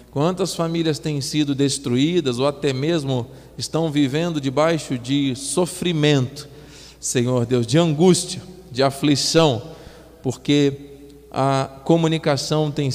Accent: Brazilian